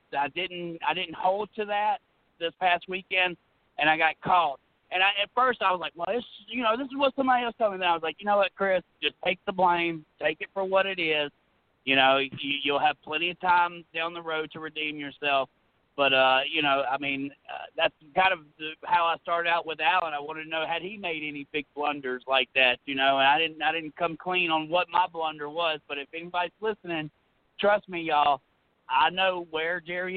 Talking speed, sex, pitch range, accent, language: 235 wpm, male, 145-190 Hz, American, English